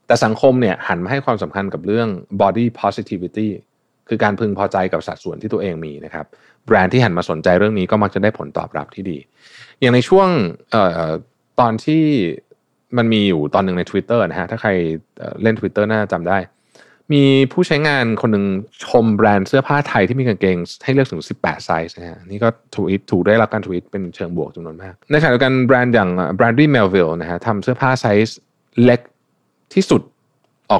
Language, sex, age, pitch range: Thai, male, 20-39, 95-125 Hz